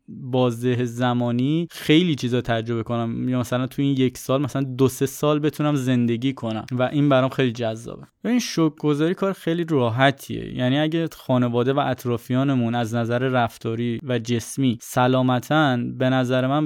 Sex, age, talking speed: male, 20-39, 160 wpm